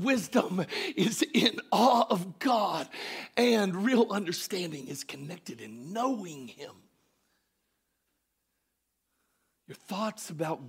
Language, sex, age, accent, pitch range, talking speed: English, male, 50-69, American, 150-230 Hz, 95 wpm